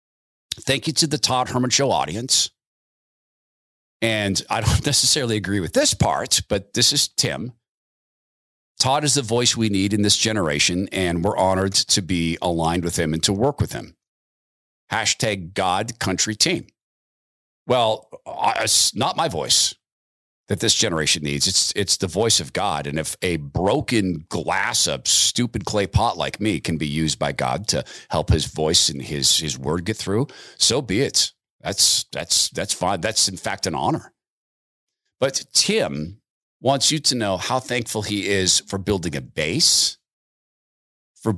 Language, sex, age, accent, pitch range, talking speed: English, male, 50-69, American, 85-120 Hz, 165 wpm